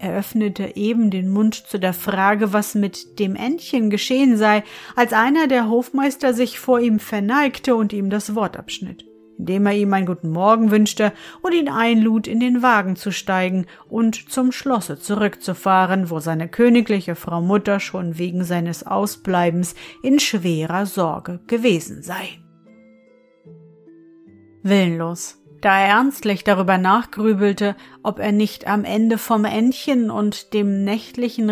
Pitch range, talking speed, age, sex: 185-240 Hz, 145 wpm, 40-59, female